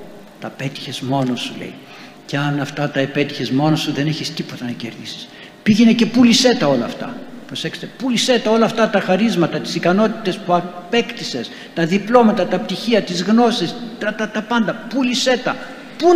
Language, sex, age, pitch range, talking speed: Greek, male, 60-79, 135-230 Hz, 180 wpm